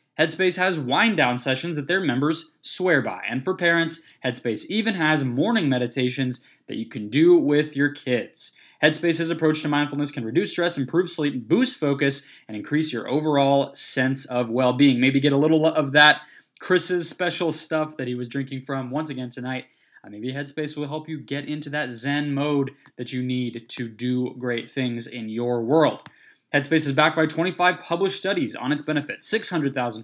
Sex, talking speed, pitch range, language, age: male, 180 wpm, 130-160 Hz, English, 20-39